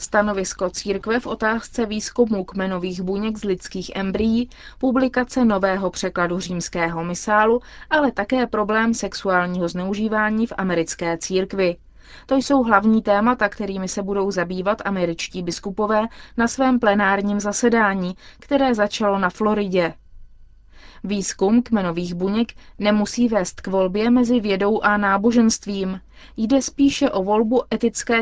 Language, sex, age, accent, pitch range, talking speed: Czech, female, 20-39, native, 190-230 Hz, 120 wpm